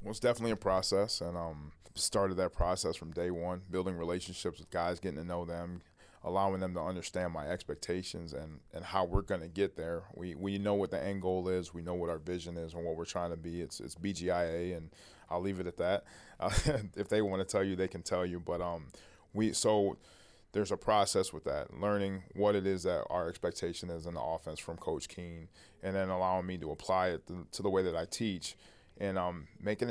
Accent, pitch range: American, 85-95 Hz